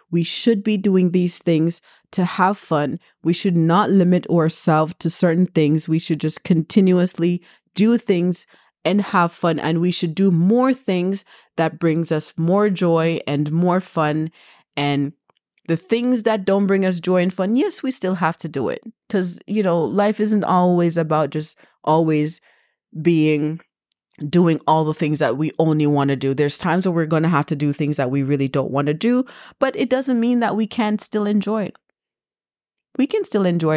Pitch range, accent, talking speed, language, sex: 155-200 Hz, American, 190 wpm, English, female